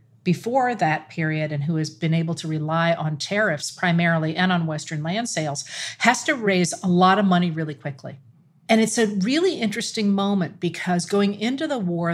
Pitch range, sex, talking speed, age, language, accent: 160-205 Hz, female, 190 wpm, 40-59, English, American